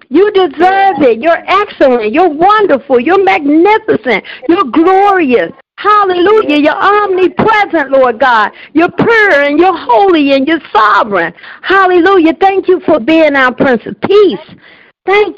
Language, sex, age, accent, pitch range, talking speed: English, female, 50-69, American, 245-345 Hz, 135 wpm